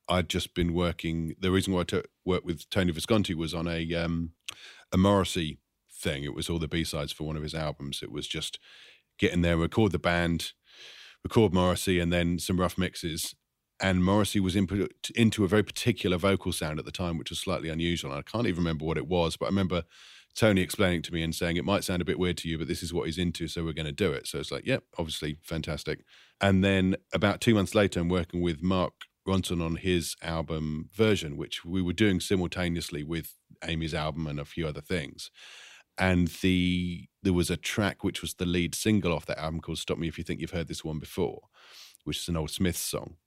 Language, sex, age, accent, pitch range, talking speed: English, male, 40-59, British, 80-95 Hz, 225 wpm